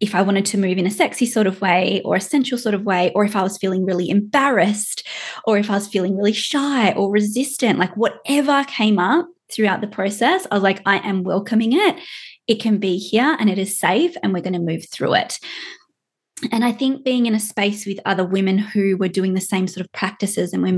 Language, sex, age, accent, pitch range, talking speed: English, female, 20-39, Australian, 195-250 Hz, 235 wpm